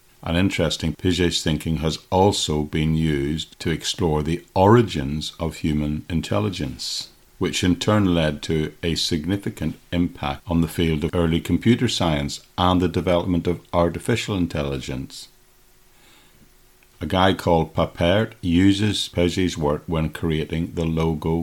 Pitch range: 80-95 Hz